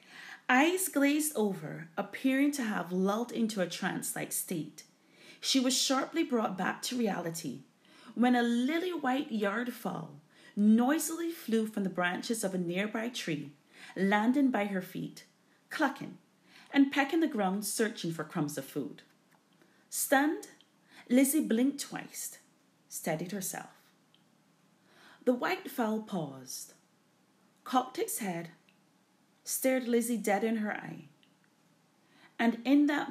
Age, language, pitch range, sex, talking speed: 30-49, English, 180-270 Hz, female, 125 wpm